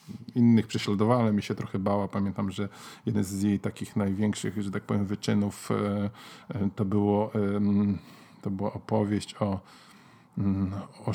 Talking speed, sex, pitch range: 130 wpm, male, 100-125 Hz